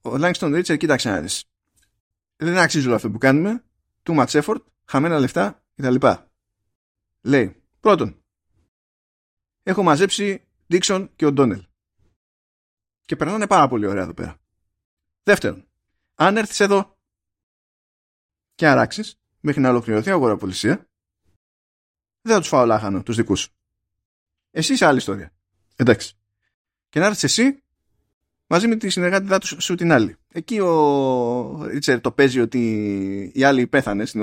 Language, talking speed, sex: Greek, 135 wpm, male